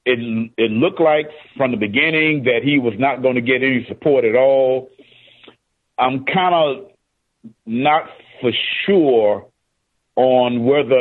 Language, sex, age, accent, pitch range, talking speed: English, male, 40-59, American, 105-135 Hz, 140 wpm